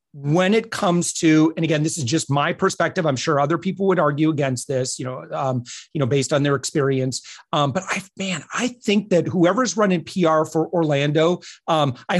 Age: 30-49